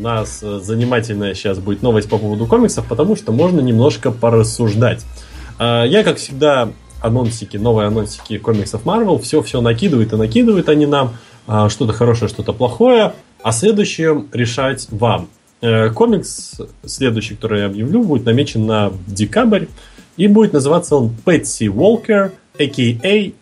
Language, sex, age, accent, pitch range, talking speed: Russian, male, 20-39, native, 110-140 Hz, 135 wpm